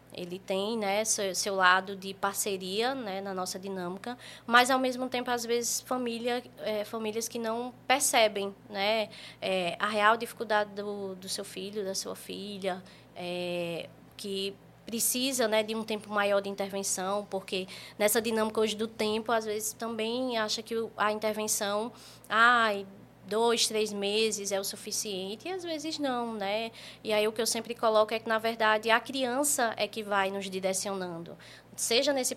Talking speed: 160 wpm